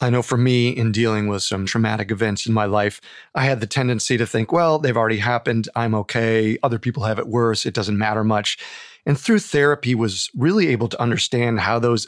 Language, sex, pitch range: English, male, 110-130 Hz